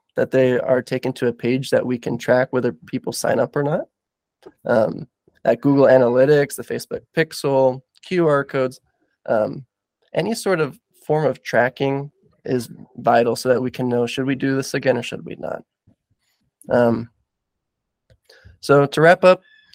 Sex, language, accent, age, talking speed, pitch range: male, English, American, 20-39, 165 wpm, 130-155 Hz